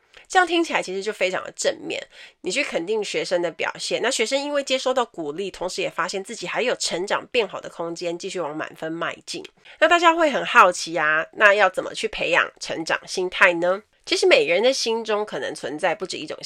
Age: 30-49